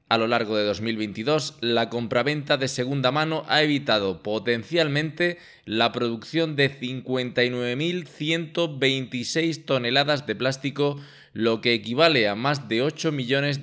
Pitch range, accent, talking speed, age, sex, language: 120-155 Hz, Spanish, 125 wpm, 20-39, male, Spanish